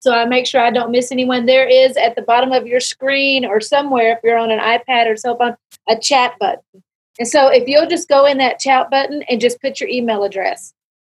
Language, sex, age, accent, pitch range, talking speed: English, female, 40-59, American, 235-275 Hz, 245 wpm